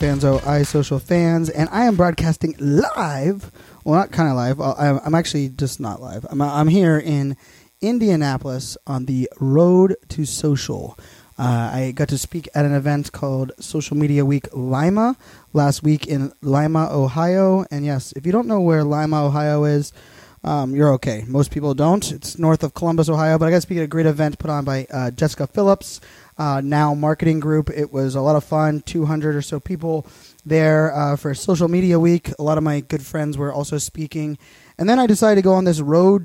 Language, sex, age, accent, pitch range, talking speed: English, male, 20-39, American, 145-170 Hz, 205 wpm